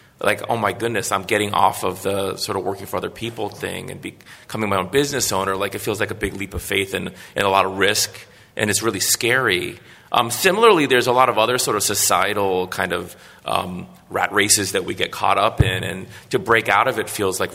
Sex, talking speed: male, 240 wpm